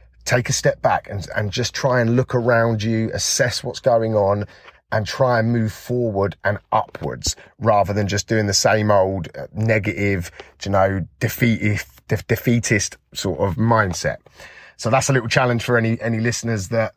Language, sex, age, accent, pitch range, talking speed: English, male, 30-49, British, 100-125 Hz, 175 wpm